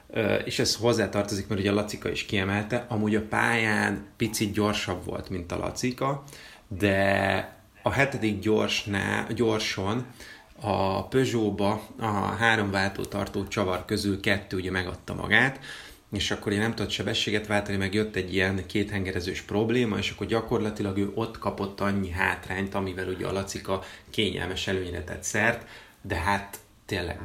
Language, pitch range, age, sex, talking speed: Hungarian, 100-115 Hz, 30-49, male, 145 wpm